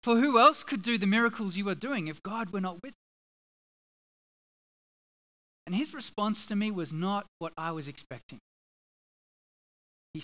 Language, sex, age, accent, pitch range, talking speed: English, male, 20-39, Australian, 155-210 Hz, 165 wpm